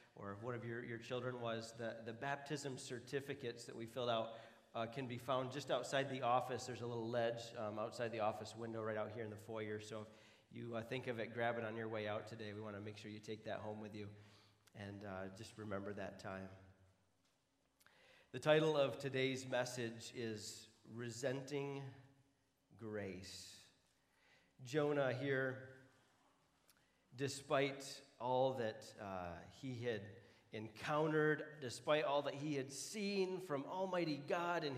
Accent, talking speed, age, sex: American, 165 wpm, 40-59, male